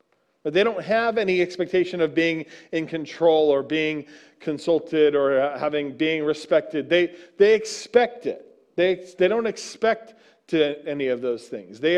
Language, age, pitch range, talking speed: English, 40-59, 155-205 Hz, 155 wpm